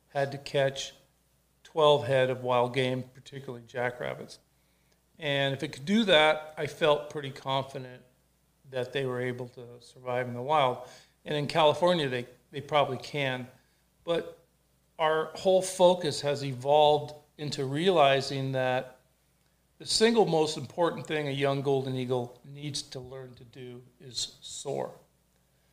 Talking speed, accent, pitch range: 140 wpm, American, 130-155 Hz